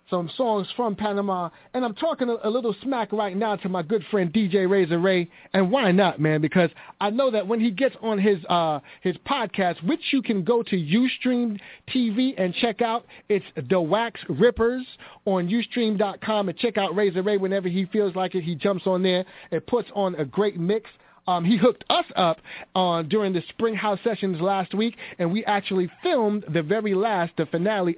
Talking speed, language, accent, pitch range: 200 wpm, English, American, 175-225 Hz